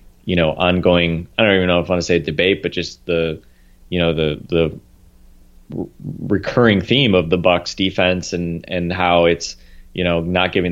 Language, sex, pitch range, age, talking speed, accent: English, male, 85-105 Hz, 30-49, 195 wpm, American